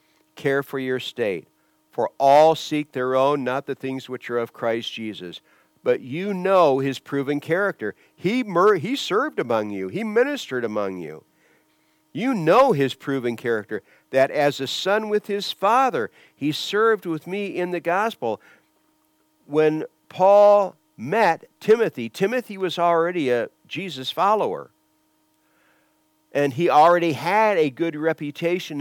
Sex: male